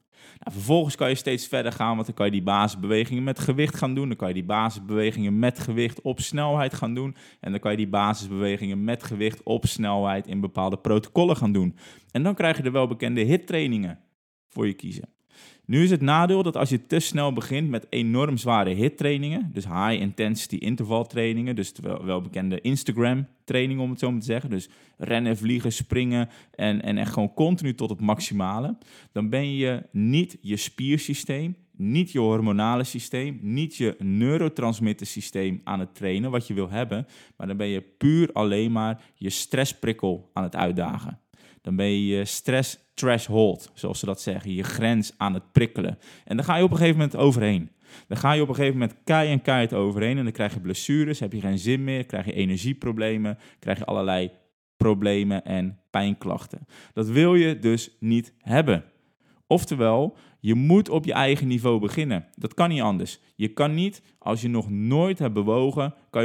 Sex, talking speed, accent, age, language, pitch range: male, 190 wpm, Dutch, 20-39, Dutch, 105-140 Hz